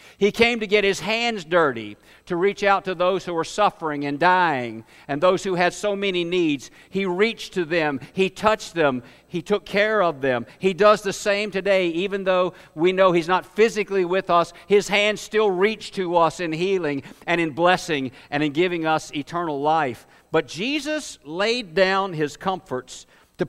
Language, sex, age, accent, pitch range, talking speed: English, male, 60-79, American, 155-195 Hz, 190 wpm